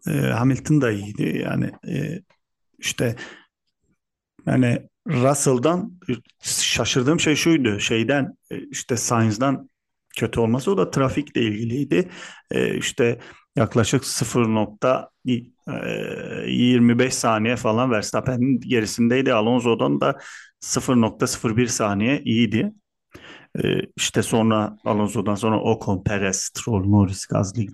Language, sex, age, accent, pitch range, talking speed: Turkish, male, 40-59, native, 110-130 Hz, 85 wpm